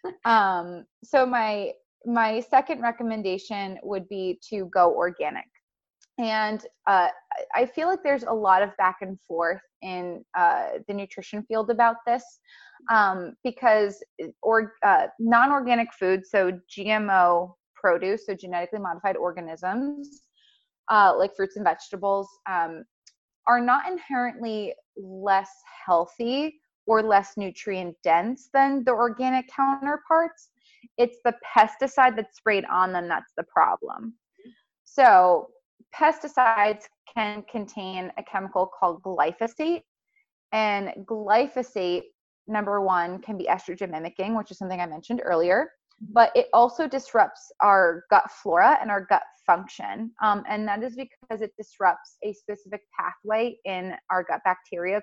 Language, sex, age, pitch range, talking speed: English, female, 20-39, 190-245 Hz, 130 wpm